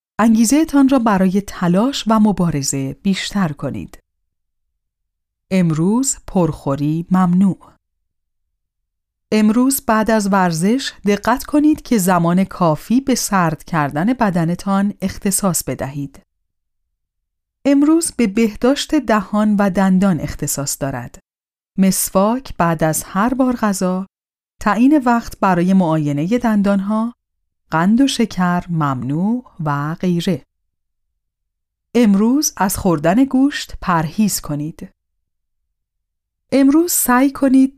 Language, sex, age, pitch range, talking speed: Persian, female, 40-59, 155-230 Hz, 100 wpm